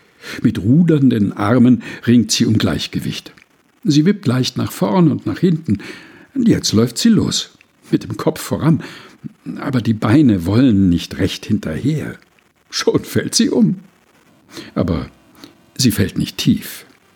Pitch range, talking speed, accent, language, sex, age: 115-185 Hz, 135 wpm, German, German, male, 60-79